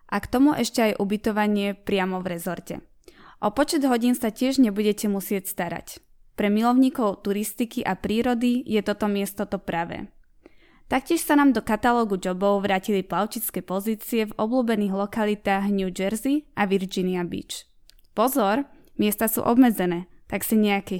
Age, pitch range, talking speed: 20-39, 200-240 Hz, 145 wpm